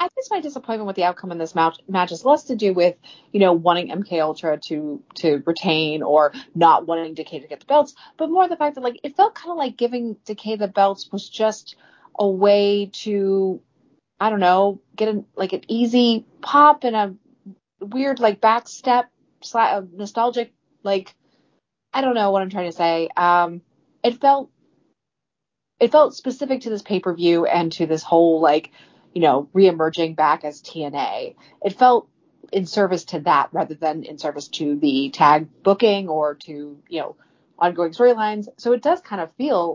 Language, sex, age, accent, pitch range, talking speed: English, female, 30-49, American, 165-235 Hz, 185 wpm